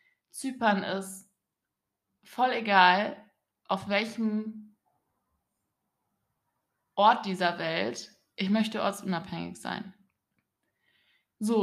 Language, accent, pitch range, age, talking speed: German, German, 190-240 Hz, 20-39, 70 wpm